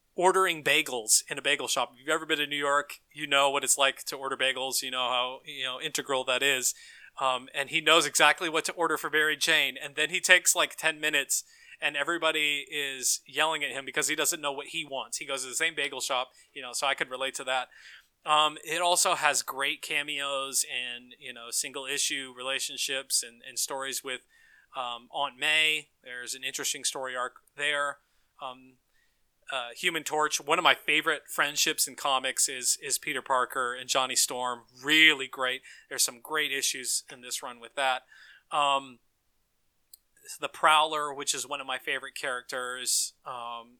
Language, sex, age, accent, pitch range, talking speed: English, male, 20-39, American, 130-155 Hz, 190 wpm